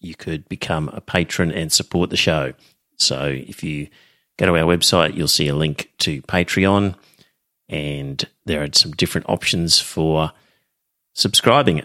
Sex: male